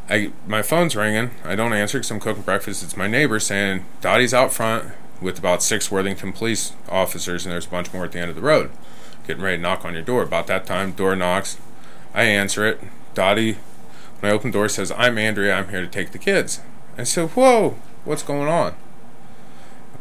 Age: 20-39